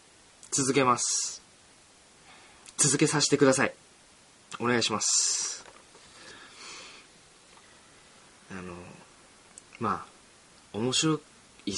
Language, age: Japanese, 20-39